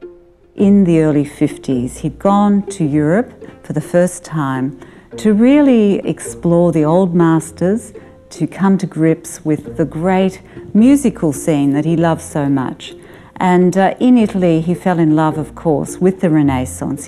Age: 50-69